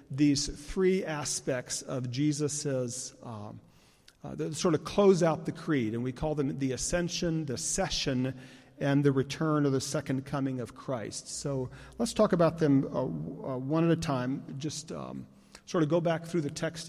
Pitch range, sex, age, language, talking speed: 140-185 Hz, male, 40-59, English, 175 wpm